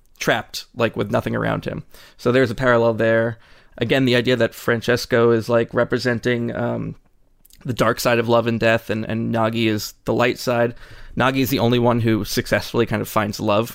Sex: male